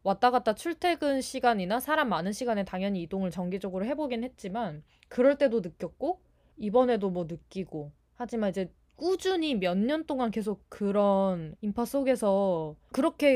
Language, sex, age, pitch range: Korean, female, 20-39, 185-265 Hz